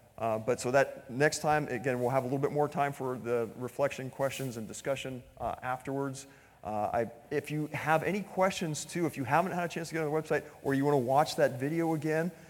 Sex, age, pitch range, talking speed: male, 40-59, 115-145 Hz, 235 wpm